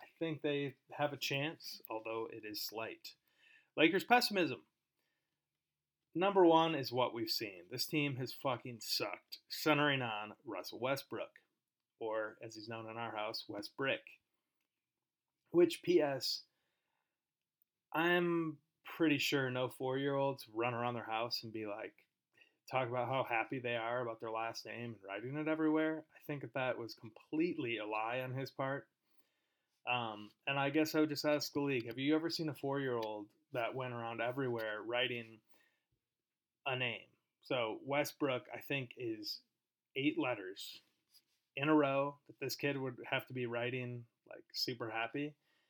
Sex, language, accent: male, English, American